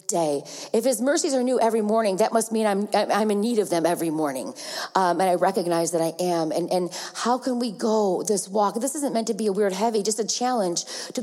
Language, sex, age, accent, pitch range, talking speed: English, female, 40-59, American, 185-230 Hz, 240 wpm